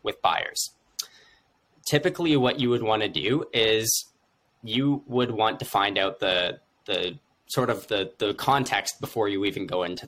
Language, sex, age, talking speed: English, male, 10-29, 165 wpm